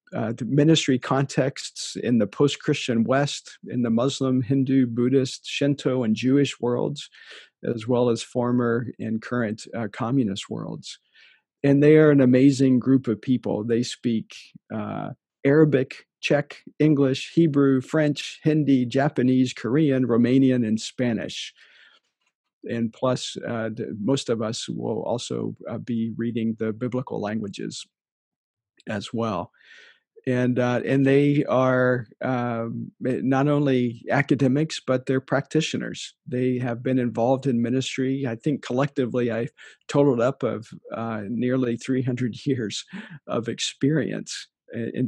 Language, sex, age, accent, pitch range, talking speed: English, male, 50-69, American, 115-135 Hz, 130 wpm